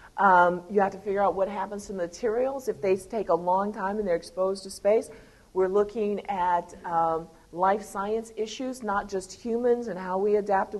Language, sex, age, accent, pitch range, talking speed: English, female, 50-69, American, 195-230 Hz, 200 wpm